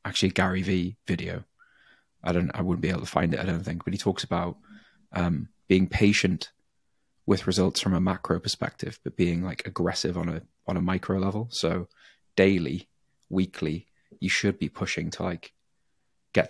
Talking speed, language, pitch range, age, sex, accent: 180 wpm, English, 90-95 Hz, 30-49, male, British